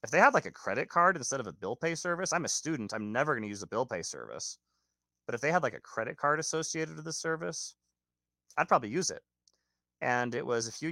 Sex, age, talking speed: male, 30-49, 255 wpm